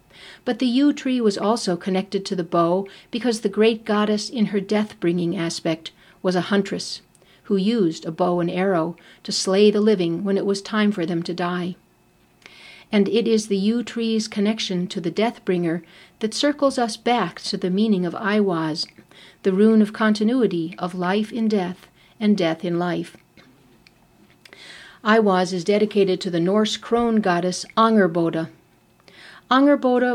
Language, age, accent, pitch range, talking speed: English, 60-79, American, 180-215 Hz, 160 wpm